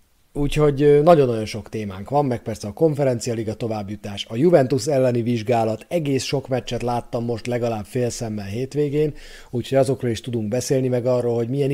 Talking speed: 165 wpm